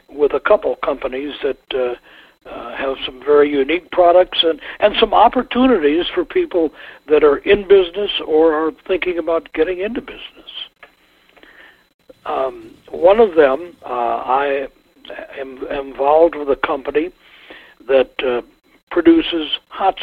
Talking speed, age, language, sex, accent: 130 wpm, 60-79, English, male, American